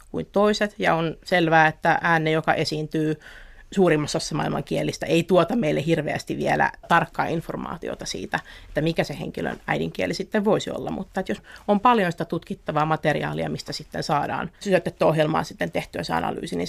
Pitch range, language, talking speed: 160-205 Hz, Finnish, 160 wpm